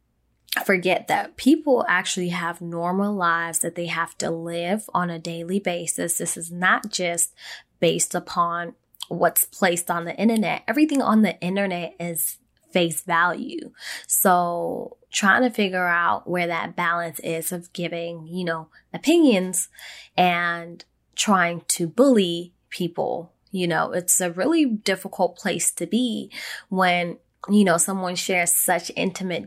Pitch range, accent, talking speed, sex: 170-200 Hz, American, 140 wpm, female